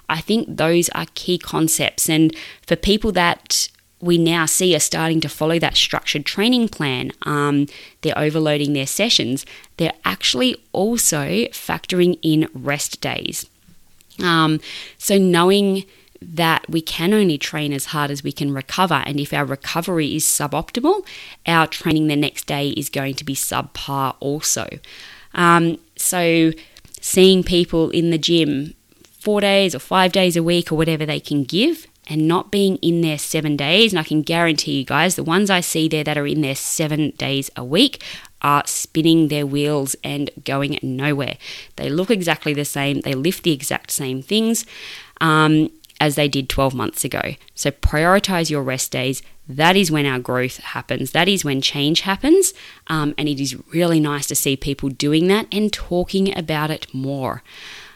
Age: 20-39